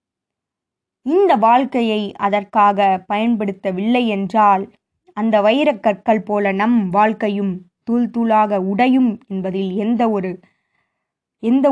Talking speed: 85 wpm